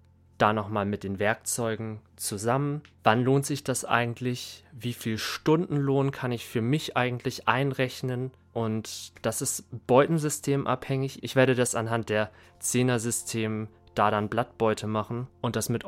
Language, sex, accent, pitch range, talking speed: German, male, German, 100-125 Hz, 145 wpm